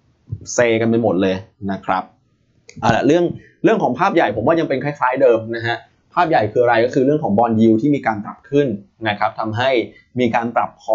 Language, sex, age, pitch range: Thai, male, 20-39, 105-135 Hz